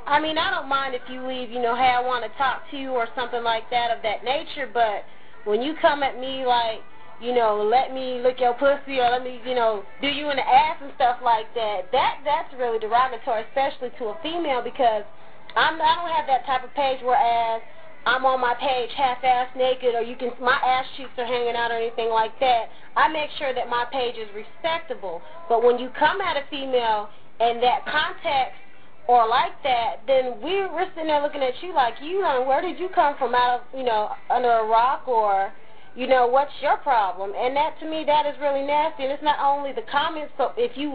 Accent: American